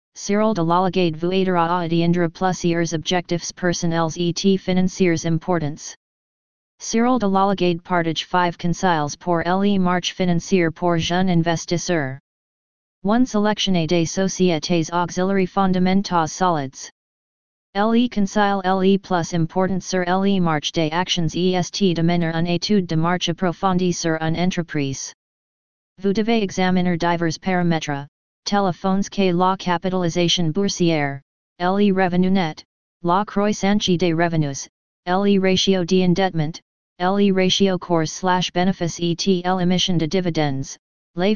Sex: female